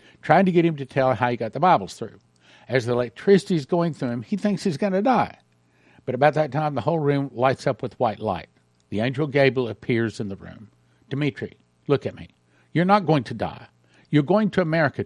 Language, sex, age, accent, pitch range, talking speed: English, male, 60-79, American, 100-150 Hz, 225 wpm